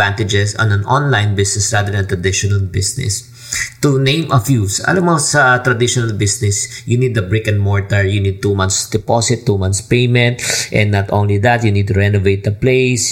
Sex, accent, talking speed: male, Filipino, 200 wpm